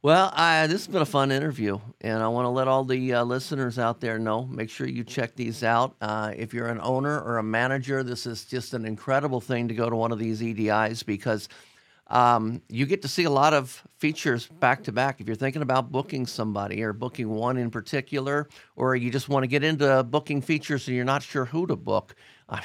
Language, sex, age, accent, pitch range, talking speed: English, male, 50-69, American, 110-140 Hz, 230 wpm